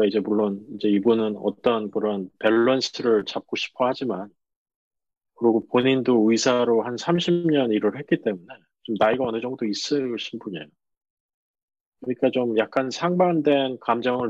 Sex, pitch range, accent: male, 110-135 Hz, native